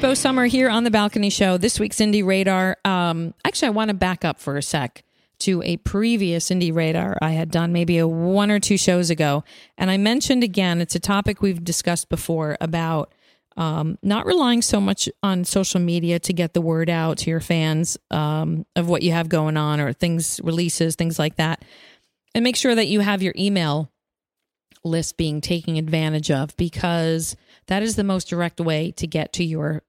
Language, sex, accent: English, female, American